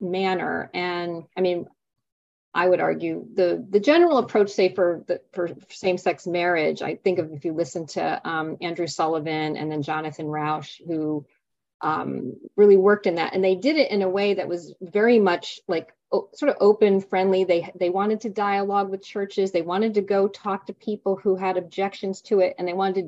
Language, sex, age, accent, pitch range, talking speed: English, female, 30-49, American, 170-200 Hz, 200 wpm